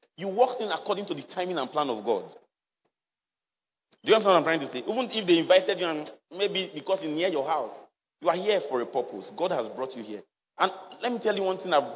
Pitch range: 170-235 Hz